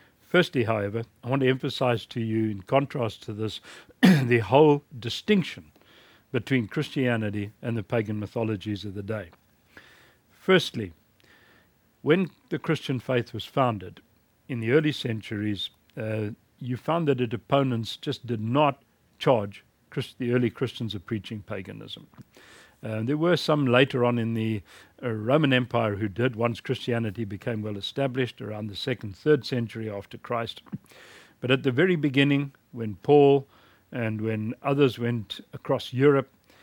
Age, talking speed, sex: 60-79, 145 wpm, male